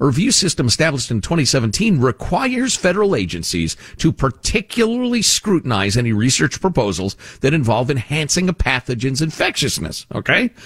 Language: English